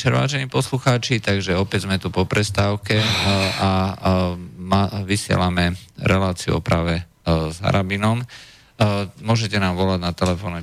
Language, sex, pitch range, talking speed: Slovak, male, 85-105 Hz, 115 wpm